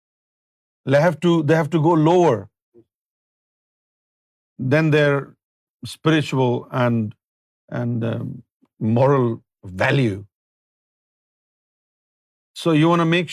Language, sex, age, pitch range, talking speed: Urdu, male, 50-69, 115-160 Hz, 95 wpm